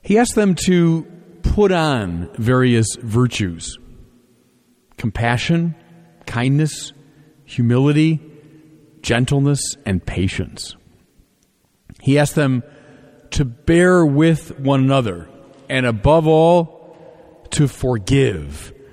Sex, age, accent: male, 40-59, American